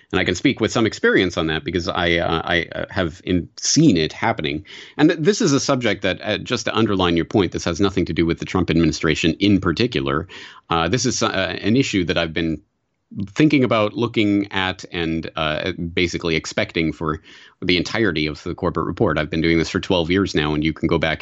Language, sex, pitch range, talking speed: English, male, 80-95 Hz, 220 wpm